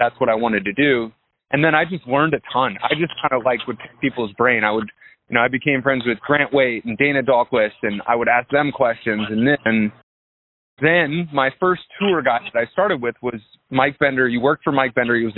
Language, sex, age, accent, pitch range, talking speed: English, male, 20-39, American, 115-140 Hz, 240 wpm